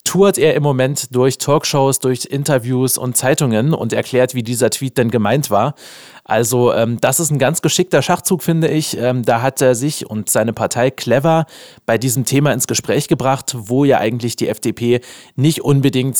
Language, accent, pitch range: German, German, 120-155 Hz